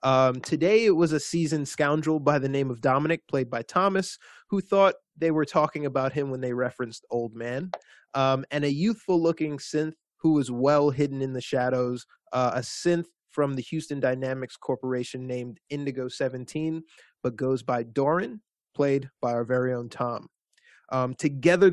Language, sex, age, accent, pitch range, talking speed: English, male, 20-39, American, 130-155 Hz, 170 wpm